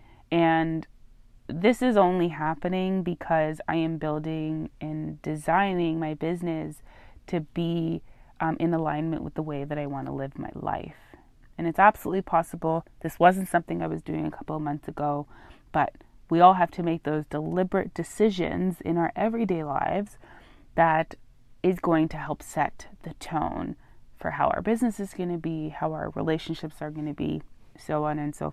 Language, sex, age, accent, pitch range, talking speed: English, female, 20-39, American, 155-185 Hz, 175 wpm